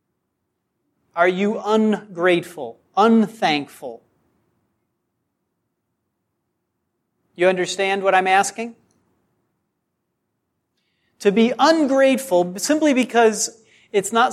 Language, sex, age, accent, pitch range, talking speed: English, male, 40-59, American, 160-215 Hz, 65 wpm